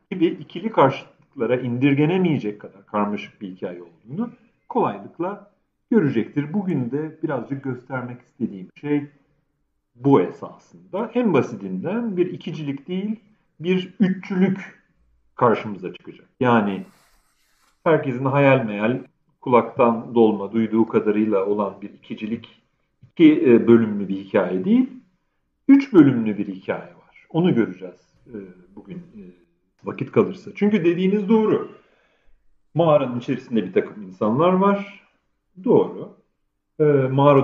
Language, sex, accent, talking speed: Turkish, male, native, 105 wpm